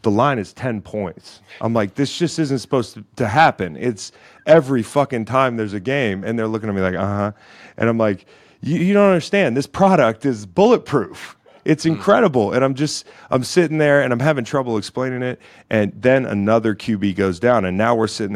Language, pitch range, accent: English, 95-115 Hz, American